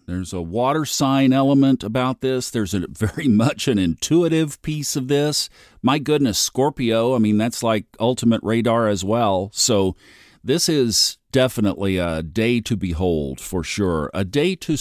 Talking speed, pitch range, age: 160 wpm, 95-130 Hz, 50-69